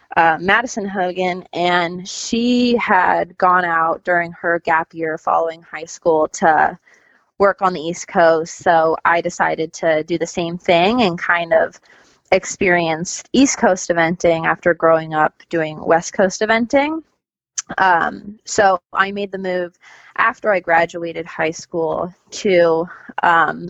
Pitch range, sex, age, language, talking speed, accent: 165-190 Hz, female, 20-39, English, 140 wpm, American